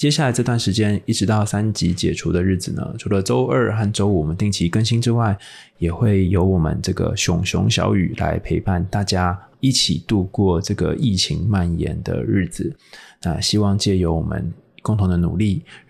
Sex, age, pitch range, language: male, 20-39, 90-110 Hz, Chinese